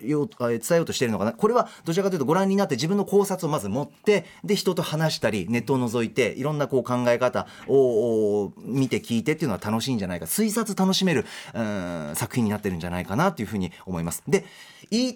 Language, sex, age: Japanese, male, 30-49